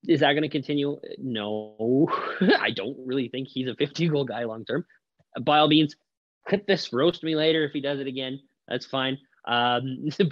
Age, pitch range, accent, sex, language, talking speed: 20-39, 110-150 Hz, American, male, English, 180 wpm